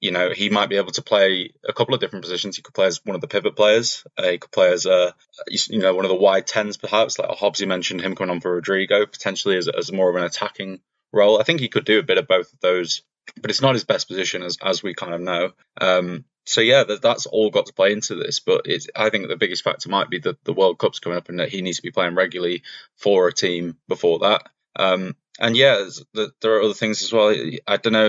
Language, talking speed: English, 270 wpm